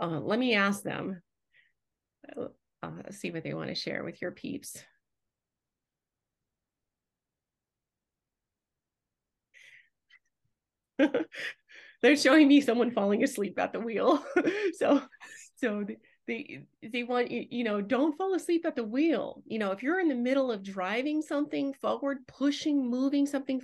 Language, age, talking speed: English, 30-49, 135 wpm